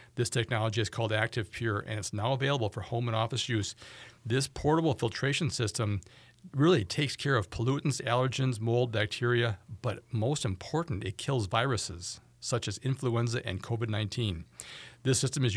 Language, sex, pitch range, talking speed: English, male, 110-135 Hz, 160 wpm